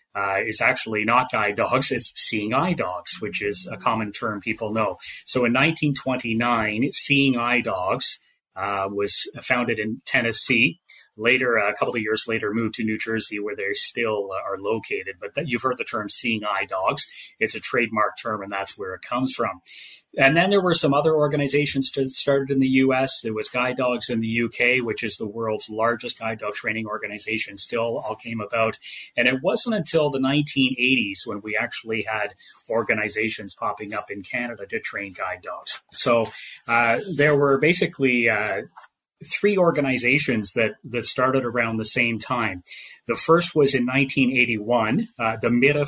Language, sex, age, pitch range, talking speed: English, male, 30-49, 110-135 Hz, 180 wpm